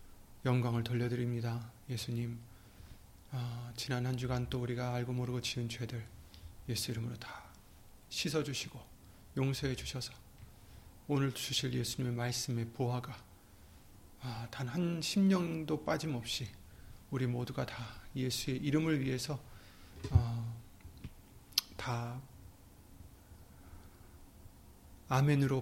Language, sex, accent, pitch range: Korean, male, native, 105-130 Hz